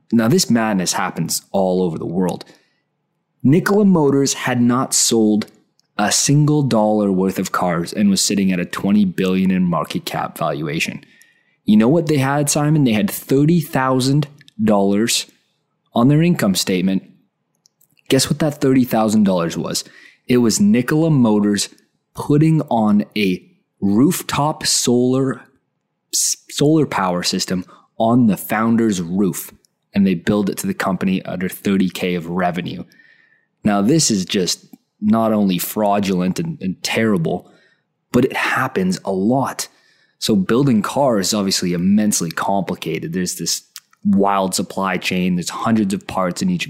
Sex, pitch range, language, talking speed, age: male, 95-150 Hz, English, 140 wpm, 20-39